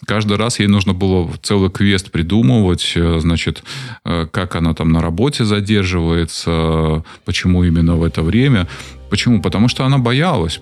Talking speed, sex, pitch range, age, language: 140 wpm, male, 90-110 Hz, 20-39, Russian